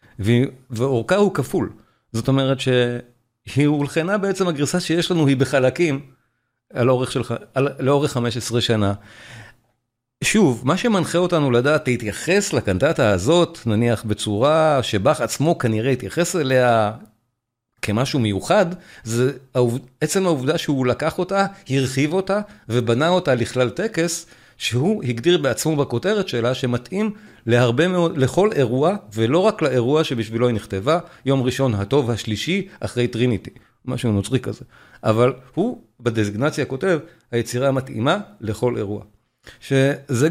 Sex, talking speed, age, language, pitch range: male, 120 wpm, 40-59, Hebrew, 115-155 Hz